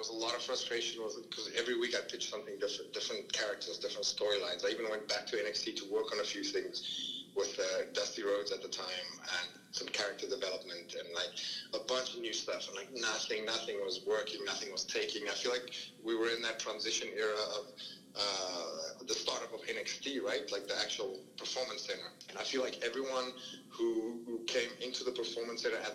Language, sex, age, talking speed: English, male, 30-49, 205 wpm